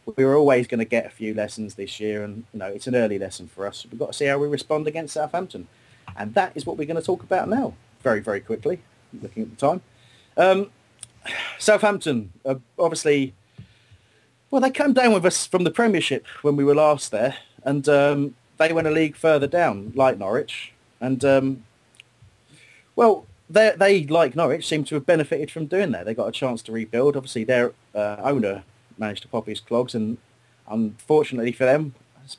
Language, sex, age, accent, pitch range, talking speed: English, male, 30-49, British, 110-150 Hz, 200 wpm